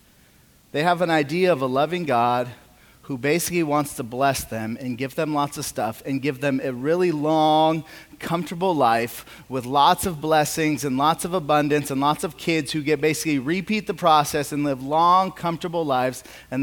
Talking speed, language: 190 wpm, English